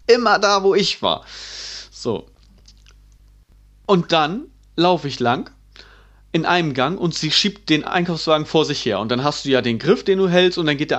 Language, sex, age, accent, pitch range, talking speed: German, male, 30-49, German, 130-160 Hz, 195 wpm